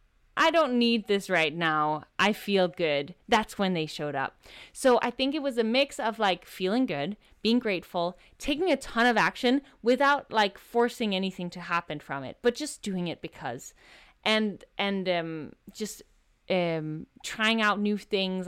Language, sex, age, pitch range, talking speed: English, female, 20-39, 175-245 Hz, 175 wpm